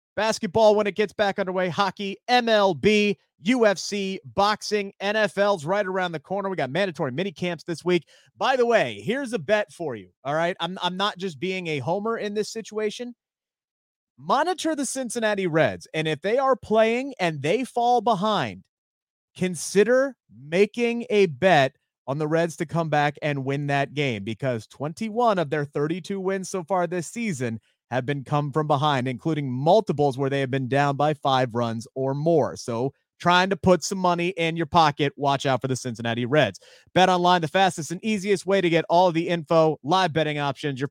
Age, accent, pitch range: 30-49, American, 145-205 Hz